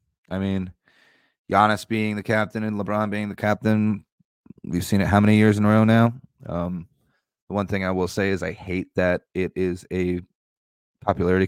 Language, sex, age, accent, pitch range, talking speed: English, male, 30-49, American, 95-120 Hz, 190 wpm